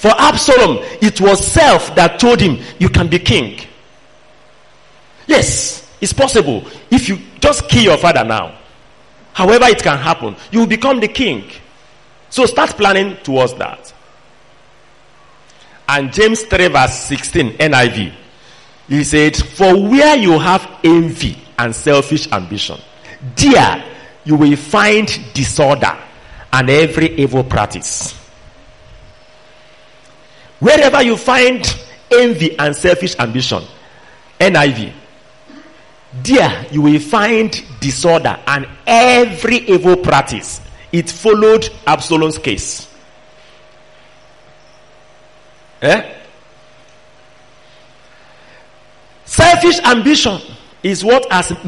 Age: 50-69